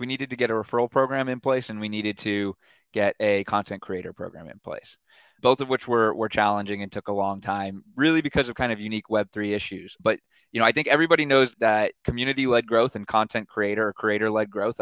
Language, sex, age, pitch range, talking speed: English, male, 20-39, 105-120 Hz, 225 wpm